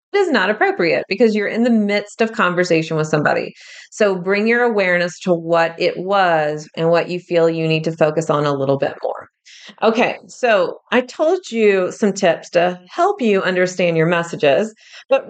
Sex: female